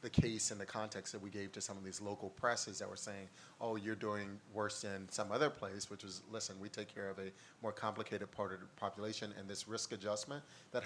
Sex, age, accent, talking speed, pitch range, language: male, 30-49, American, 245 wpm, 100-110 Hz, English